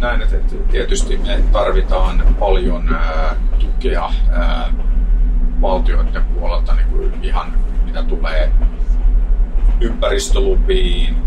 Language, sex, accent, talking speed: Finnish, male, native, 90 wpm